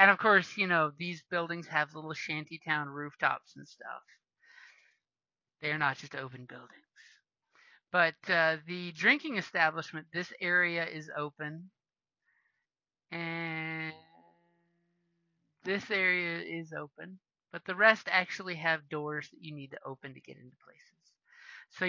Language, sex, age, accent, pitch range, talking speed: English, male, 30-49, American, 155-195 Hz, 130 wpm